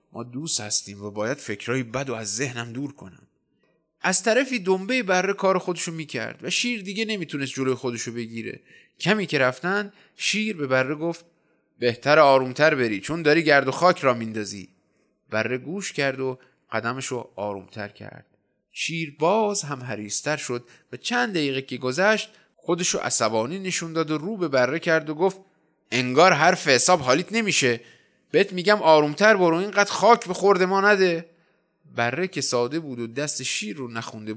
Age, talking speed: 30-49, 170 wpm